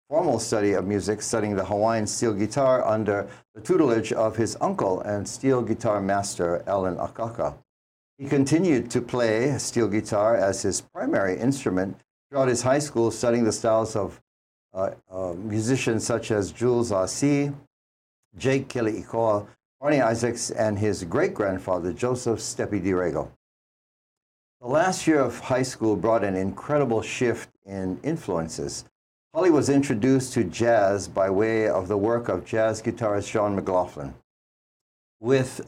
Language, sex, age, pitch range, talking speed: English, male, 60-79, 100-130 Hz, 145 wpm